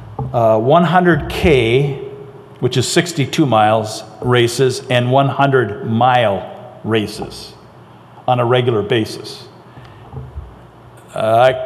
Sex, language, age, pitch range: male, English, 50-69, 110-135 Hz